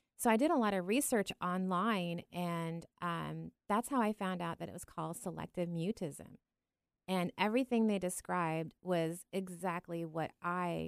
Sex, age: female, 30-49